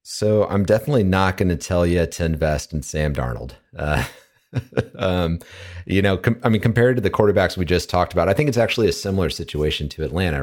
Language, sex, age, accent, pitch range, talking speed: English, male, 30-49, American, 85-105 Hz, 205 wpm